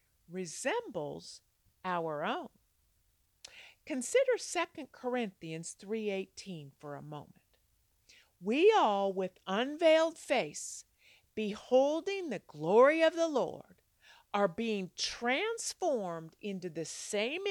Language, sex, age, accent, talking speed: English, female, 50-69, American, 95 wpm